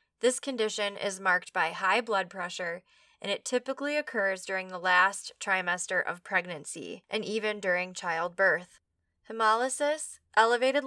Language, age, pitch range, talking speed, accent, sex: English, 10-29, 190-225 Hz, 130 wpm, American, female